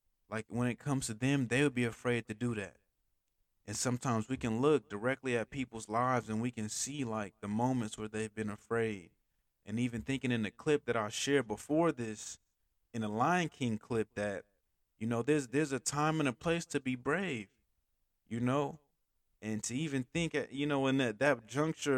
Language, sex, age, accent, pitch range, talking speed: English, male, 20-39, American, 110-140 Hz, 205 wpm